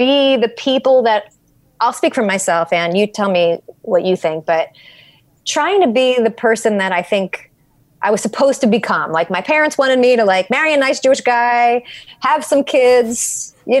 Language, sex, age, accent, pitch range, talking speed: English, female, 30-49, American, 195-260 Hz, 195 wpm